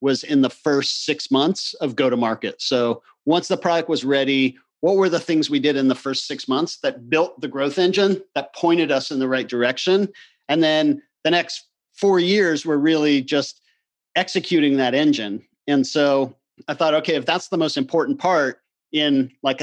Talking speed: 195 wpm